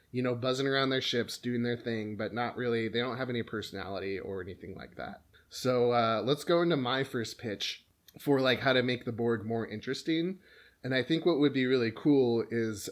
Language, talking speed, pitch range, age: English, 220 wpm, 110-130 Hz, 20-39